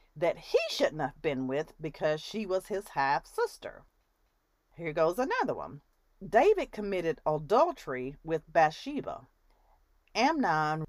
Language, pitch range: English, 160-245 Hz